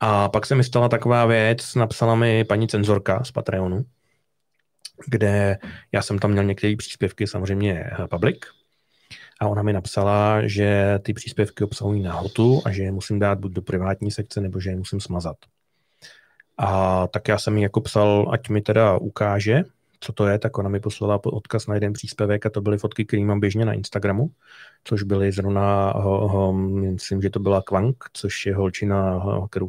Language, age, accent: Czech, 30-49, native